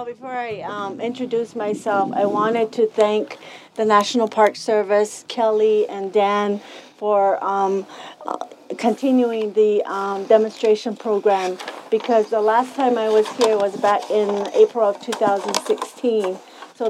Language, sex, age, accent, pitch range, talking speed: English, female, 40-59, American, 210-245 Hz, 140 wpm